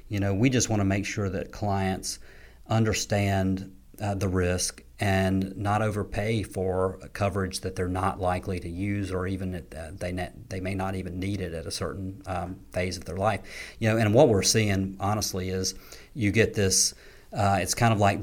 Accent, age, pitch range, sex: American, 40-59, 95-105 Hz, male